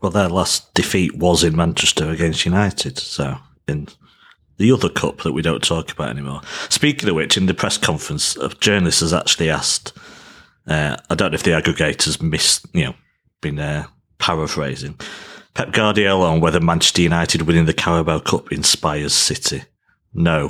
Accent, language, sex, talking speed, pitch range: British, English, male, 170 wpm, 80-115 Hz